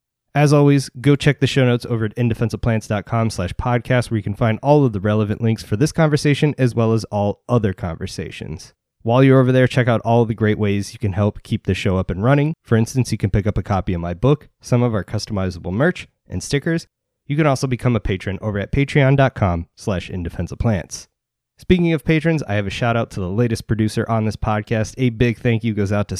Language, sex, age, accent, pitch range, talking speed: English, male, 20-39, American, 100-130 Hz, 225 wpm